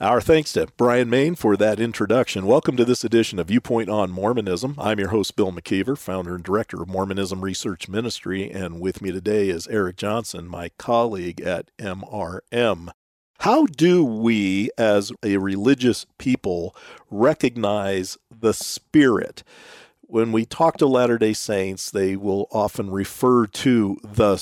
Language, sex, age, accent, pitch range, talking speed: English, male, 50-69, American, 100-135 Hz, 150 wpm